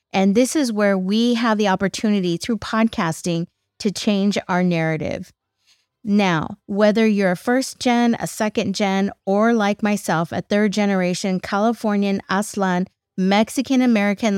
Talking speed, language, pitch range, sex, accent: 135 wpm, English, 180-215 Hz, female, American